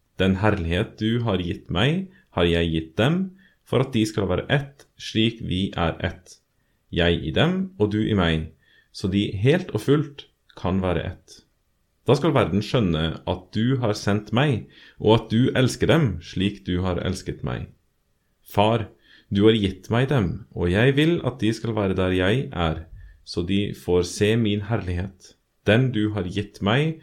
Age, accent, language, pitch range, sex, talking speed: 30-49, Norwegian, English, 90-115 Hz, male, 185 wpm